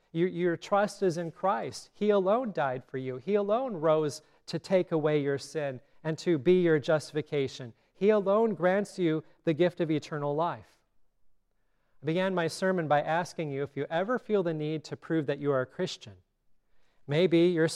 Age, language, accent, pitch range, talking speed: 30-49, English, American, 135-175 Hz, 185 wpm